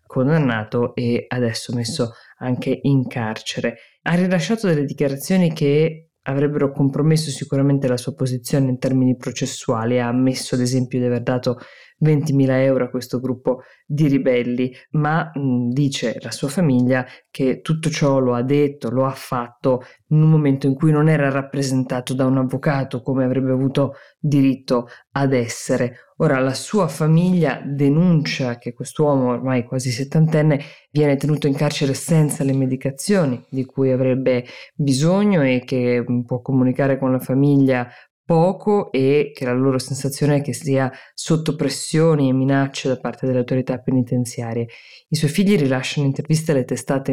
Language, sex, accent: Italian, female, native